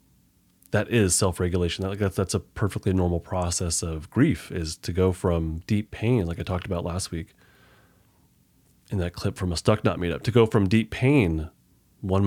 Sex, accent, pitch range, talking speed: male, American, 90-105 Hz, 190 wpm